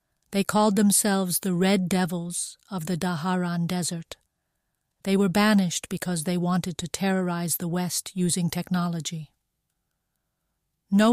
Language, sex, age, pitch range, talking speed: English, female, 40-59, 175-200 Hz, 125 wpm